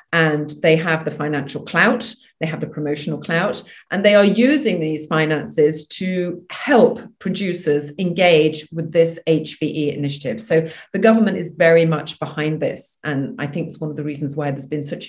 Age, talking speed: 40-59, 180 wpm